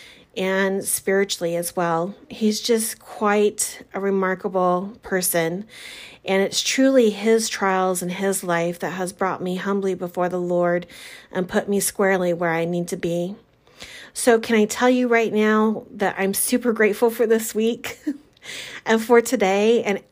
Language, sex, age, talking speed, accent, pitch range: English, female, 30-49, 160 wpm, American, 185-220 Hz